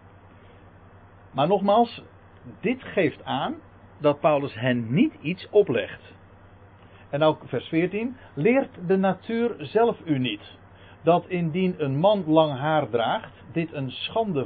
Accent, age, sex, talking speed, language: Dutch, 60-79, male, 130 wpm, Dutch